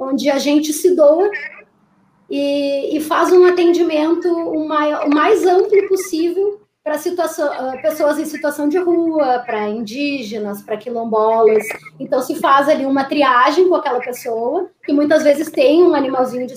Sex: female